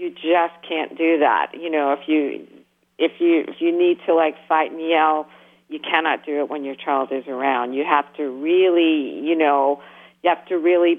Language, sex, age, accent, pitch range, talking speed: English, female, 50-69, American, 135-165 Hz, 205 wpm